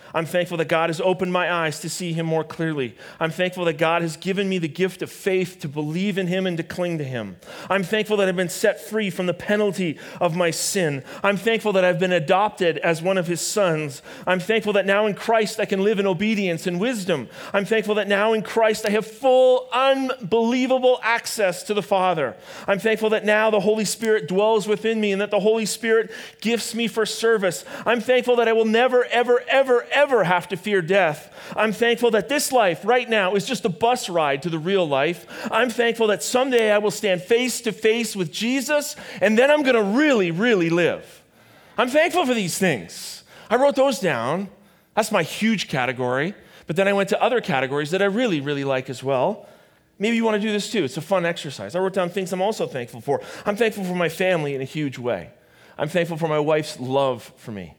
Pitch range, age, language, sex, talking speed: 175-225 Hz, 40-59, English, male, 220 wpm